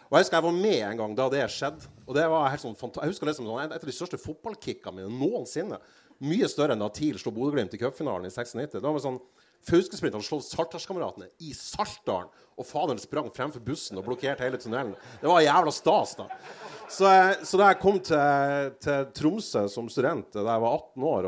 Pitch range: 125-195 Hz